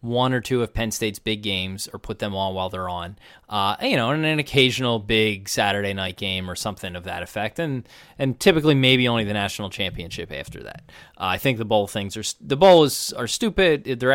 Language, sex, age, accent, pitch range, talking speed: English, male, 20-39, American, 105-140 Hz, 220 wpm